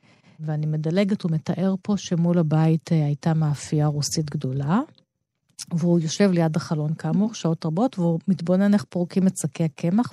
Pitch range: 160-200 Hz